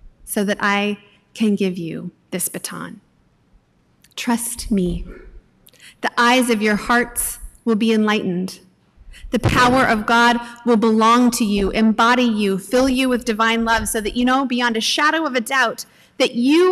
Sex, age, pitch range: female, 30-49, 210-250 Hz